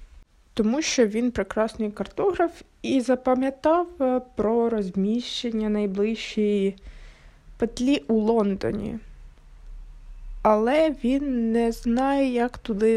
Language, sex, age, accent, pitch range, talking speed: Ukrainian, female, 20-39, native, 190-240 Hz, 90 wpm